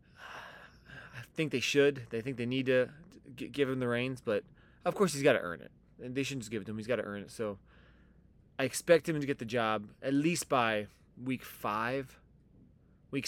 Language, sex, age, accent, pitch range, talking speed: English, male, 20-39, American, 120-155 Hz, 210 wpm